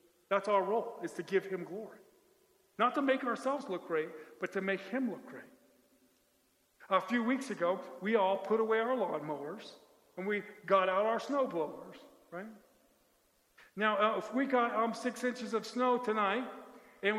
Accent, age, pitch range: American, 50-69, 195-245 Hz